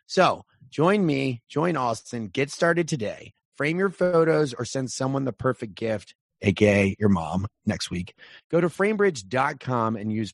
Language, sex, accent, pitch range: English, male, American, 110-140 Hz